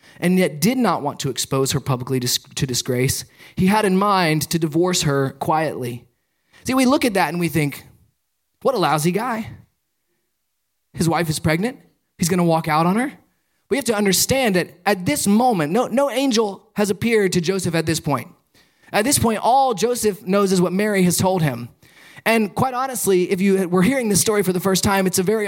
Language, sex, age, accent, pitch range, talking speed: English, male, 20-39, American, 170-225 Hz, 205 wpm